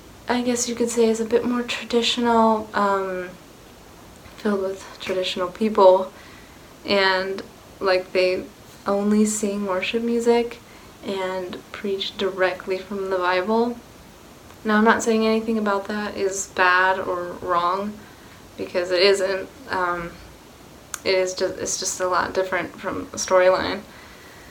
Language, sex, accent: English, female, American